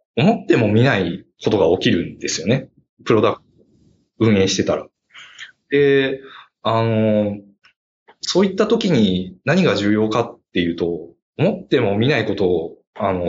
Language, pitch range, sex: Japanese, 105-165 Hz, male